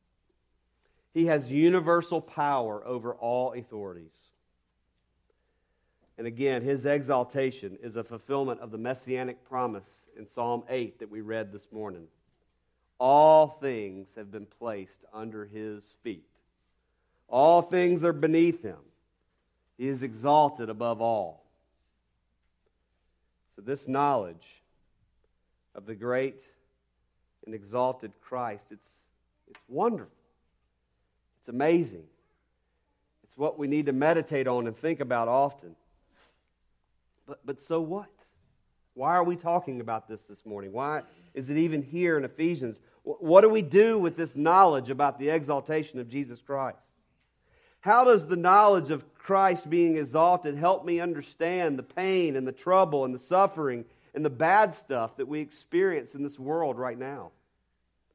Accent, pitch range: American, 100-155 Hz